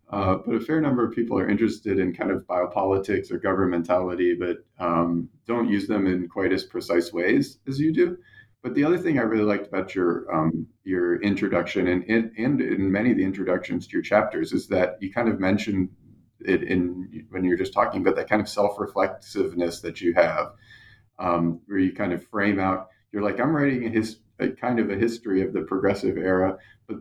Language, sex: English, male